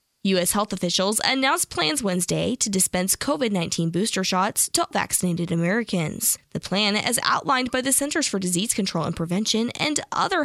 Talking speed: 160 wpm